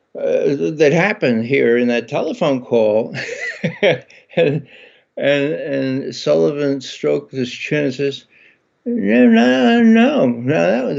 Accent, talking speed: American, 120 wpm